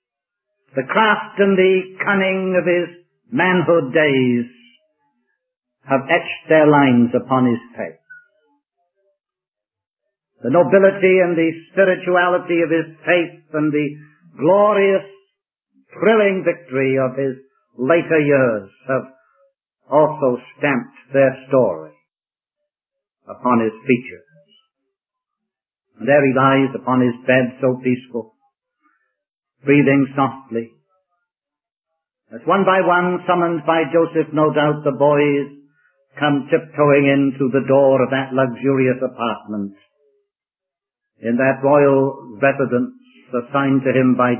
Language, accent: English, British